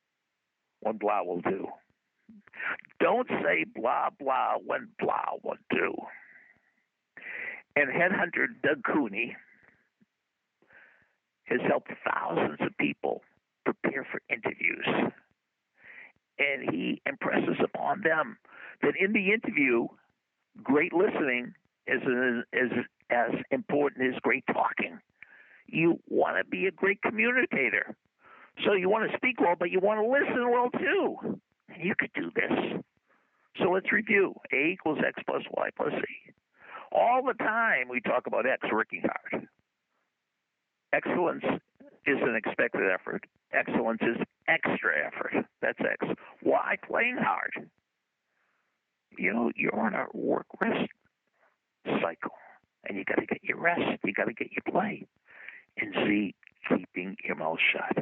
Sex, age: male, 60-79